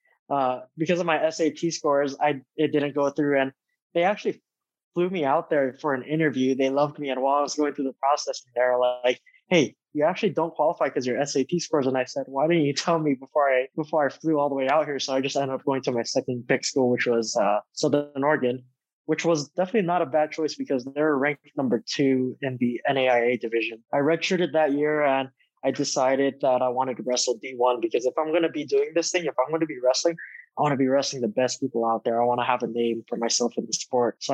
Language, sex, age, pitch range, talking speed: English, male, 20-39, 125-150 Hz, 250 wpm